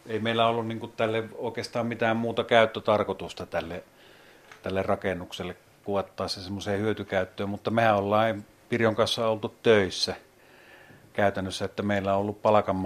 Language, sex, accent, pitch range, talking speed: Finnish, male, native, 95-115 Hz, 130 wpm